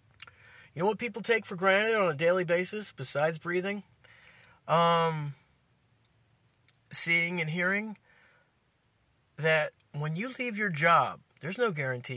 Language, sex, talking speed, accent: English, male, 130 wpm, American